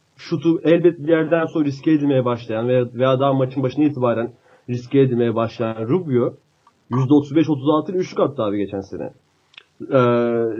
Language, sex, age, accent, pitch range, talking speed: Turkish, male, 30-49, native, 125-185 Hz, 135 wpm